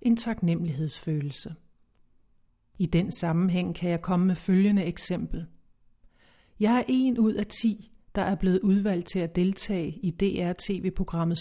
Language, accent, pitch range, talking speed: English, Danish, 170-205 Hz, 135 wpm